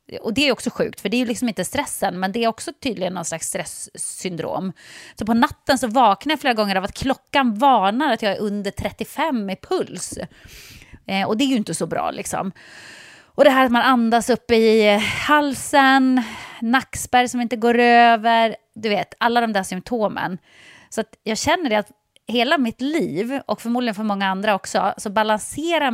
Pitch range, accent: 200-275 Hz, native